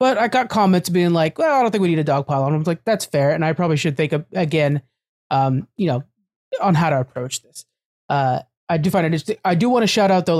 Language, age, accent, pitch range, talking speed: English, 30-49, American, 150-190 Hz, 265 wpm